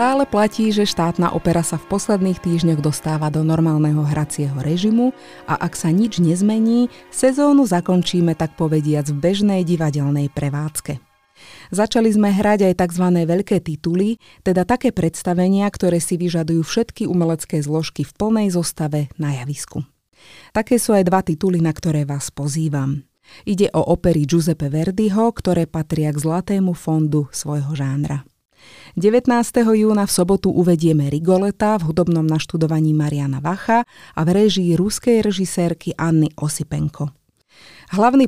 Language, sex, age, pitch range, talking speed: Slovak, female, 30-49, 155-200 Hz, 140 wpm